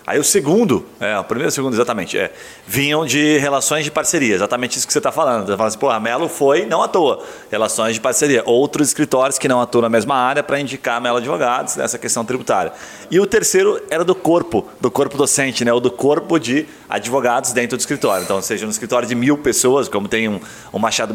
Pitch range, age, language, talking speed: 120-185 Hz, 30-49, Portuguese, 240 wpm